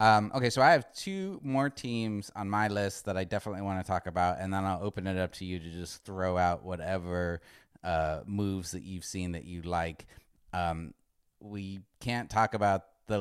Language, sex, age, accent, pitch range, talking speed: English, male, 30-49, American, 90-110 Hz, 205 wpm